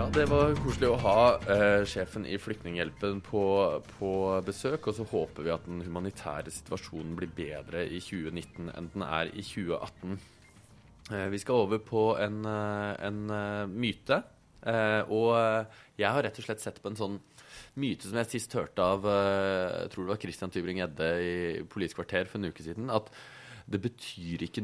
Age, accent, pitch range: 20-39, Norwegian, 85-105 Hz